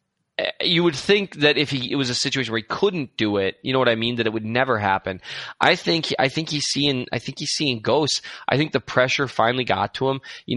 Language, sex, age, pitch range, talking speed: English, male, 20-39, 110-140 Hz, 255 wpm